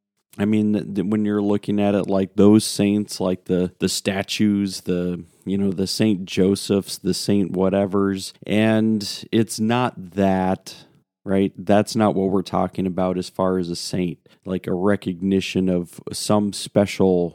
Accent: American